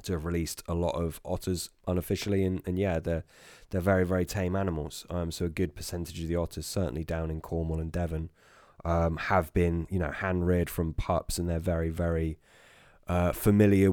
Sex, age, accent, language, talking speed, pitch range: male, 20-39, British, English, 195 wpm, 85-95 Hz